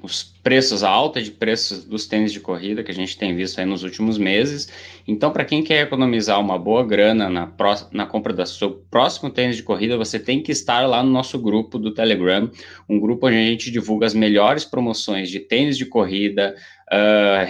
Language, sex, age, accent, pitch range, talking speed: Portuguese, male, 20-39, Brazilian, 105-140 Hz, 210 wpm